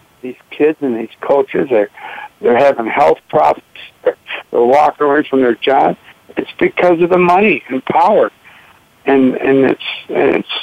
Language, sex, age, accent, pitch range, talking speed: English, male, 60-79, American, 135-170 Hz, 165 wpm